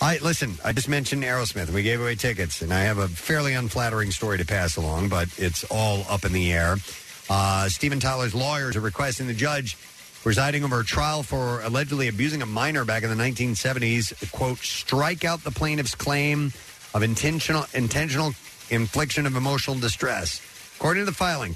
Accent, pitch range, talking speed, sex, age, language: American, 110-140 Hz, 185 wpm, male, 50-69, English